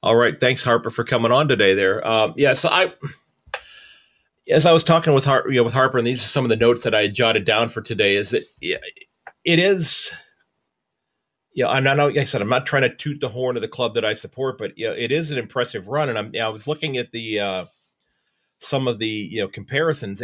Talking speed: 265 wpm